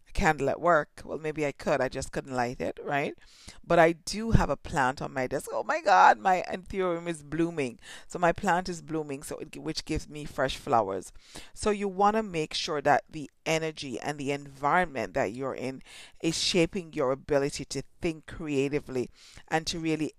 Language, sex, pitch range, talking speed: English, female, 140-175 Hz, 195 wpm